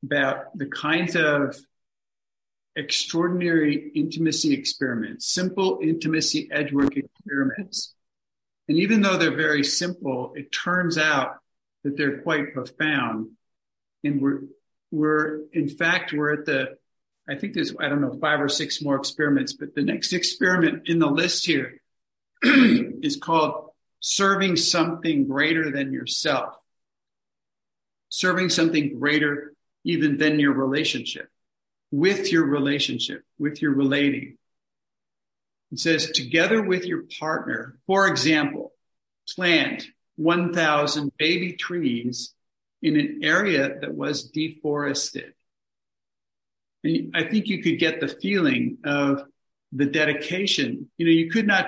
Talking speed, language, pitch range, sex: 125 wpm, English, 145-175 Hz, male